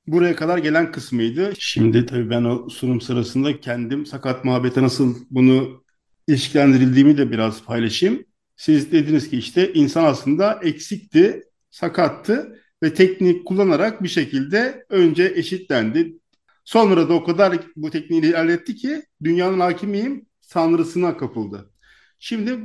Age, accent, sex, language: 50-69, native, male, Turkish